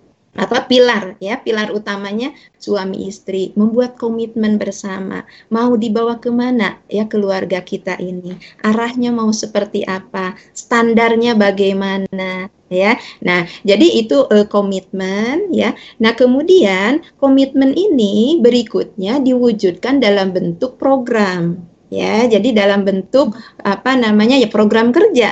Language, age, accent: Indonesian, 20-39, native